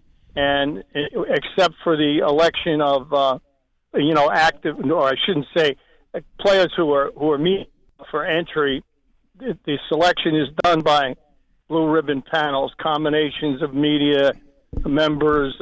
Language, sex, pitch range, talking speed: English, male, 145-165 Hz, 130 wpm